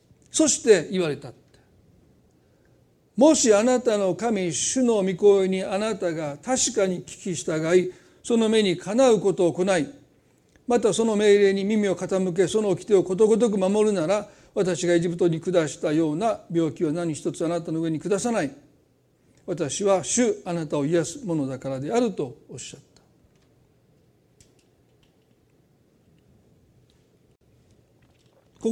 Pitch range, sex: 170-235 Hz, male